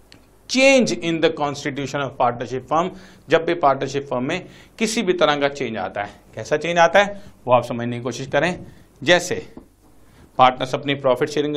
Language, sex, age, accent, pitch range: Hindi, male, 50-69, native, 125-190 Hz